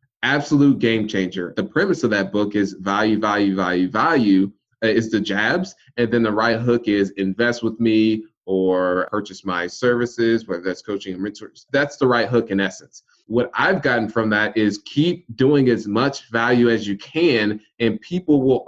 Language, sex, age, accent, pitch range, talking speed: English, male, 20-39, American, 100-120 Hz, 185 wpm